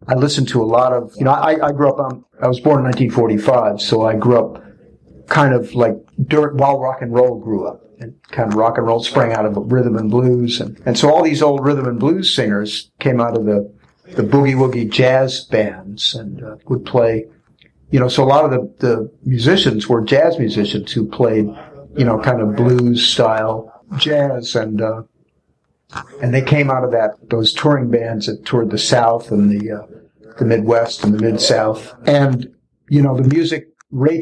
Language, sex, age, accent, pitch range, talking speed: English, male, 60-79, American, 110-140 Hz, 200 wpm